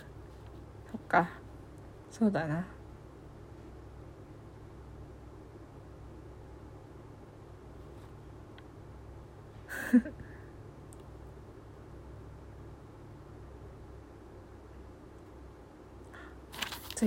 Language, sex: Japanese, female